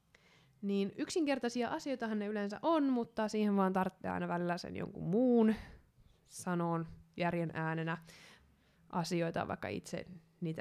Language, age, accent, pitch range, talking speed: Finnish, 20-39, native, 170-200 Hz, 125 wpm